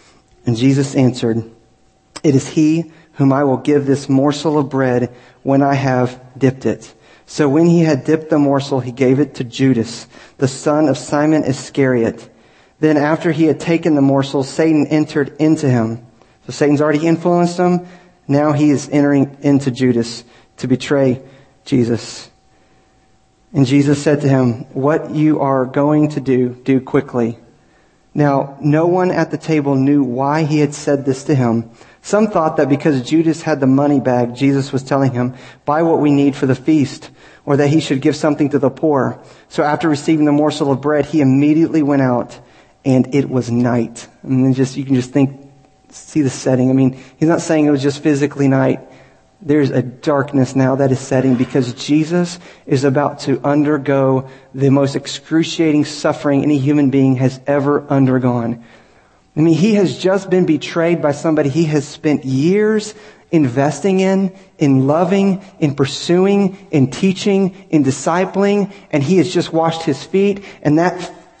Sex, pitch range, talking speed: male, 130-155 Hz, 175 wpm